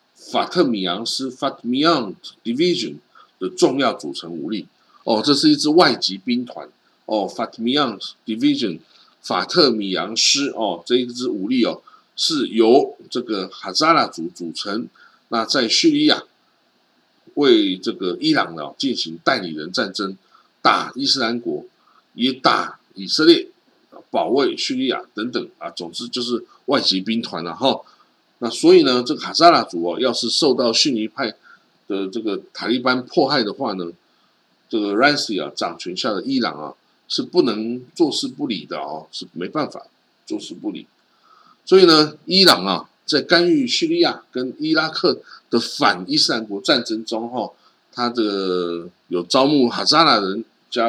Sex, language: male, Chinese